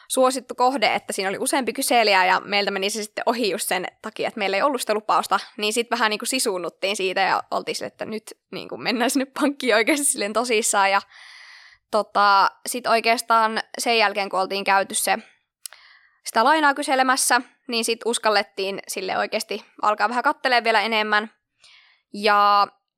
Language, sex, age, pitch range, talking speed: Finnish, female, 20-39, 200-250 Hz, 165 wpm